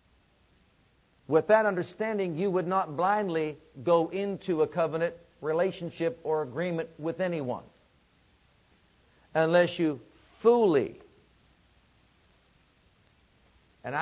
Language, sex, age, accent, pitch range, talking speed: English, male, 50-69, American, 145-185 Hz, 85 wpm